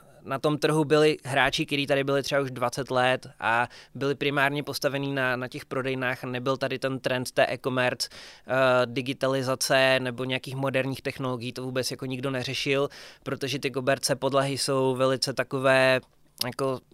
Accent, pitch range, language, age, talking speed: native, 130-145 Hz, Czech, 20-39, 160 wpm